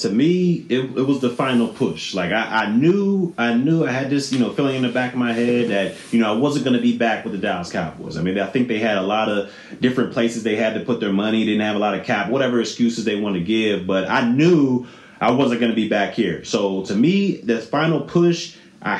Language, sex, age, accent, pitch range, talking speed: English, male, 30-49, American, 115-140 Hz, 270 wpm